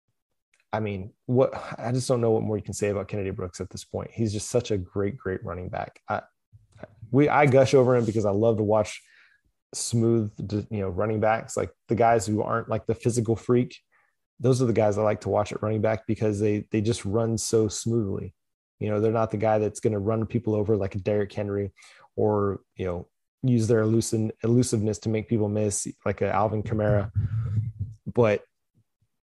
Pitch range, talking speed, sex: 105-120 Hz, 205 wpm, male